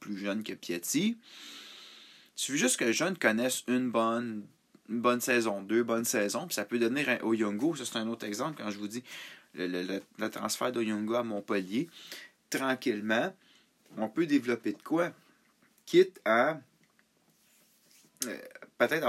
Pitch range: 100-120 Hz